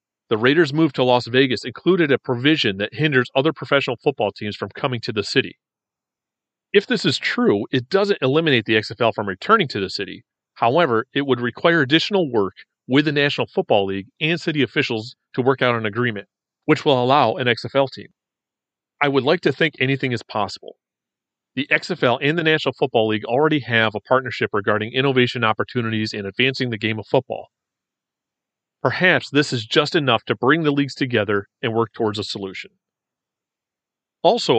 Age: 40-59